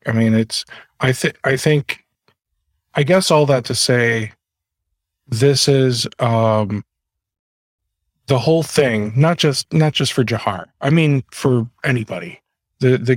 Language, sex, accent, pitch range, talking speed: English, male, American, 100-130 Hz, 135 wpm